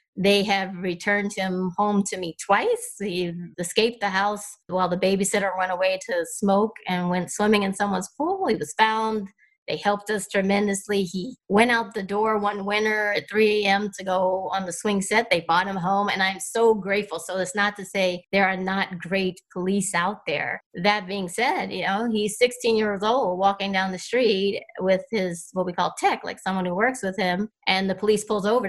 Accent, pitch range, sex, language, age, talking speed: American, 185-215 Hz, female, English, 30-49, 205 wpm